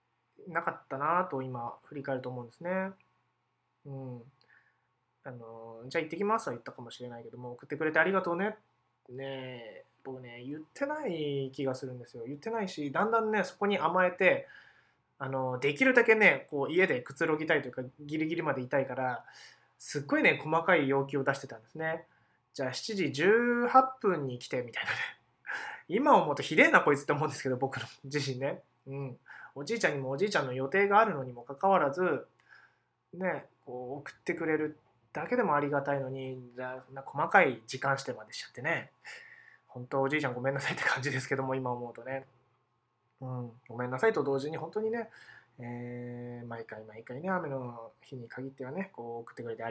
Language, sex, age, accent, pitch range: Japanese, male, 20-39, native, 125-170 Hz